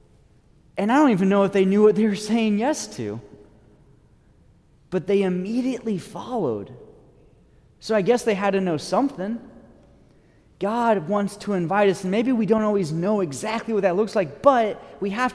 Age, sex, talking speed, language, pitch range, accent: 30-49, male, 175 wpm, English, 150-210 Hz, American